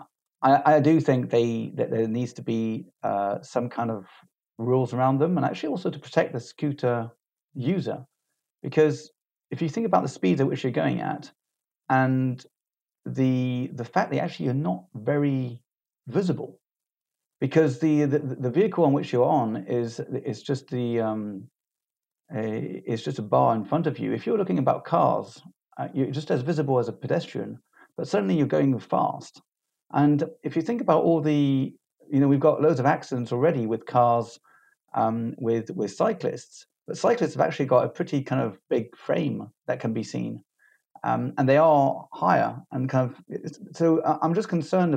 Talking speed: 180 wpm